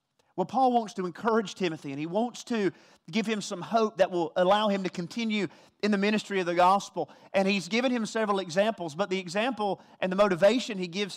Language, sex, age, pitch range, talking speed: English, male, 30-49, 185-250 Hz, 215 wpm